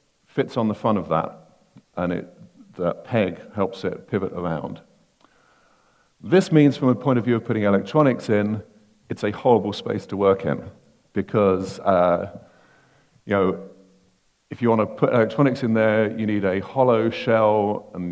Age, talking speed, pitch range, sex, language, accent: 50-69, 160 wpm, 90-115 Hz, male, English, British